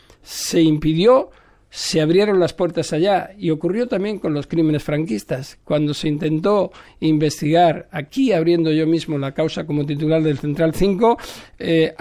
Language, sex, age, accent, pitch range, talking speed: Spanish, male, 60-79, Spanish, 150-180 Hz, 150 wpm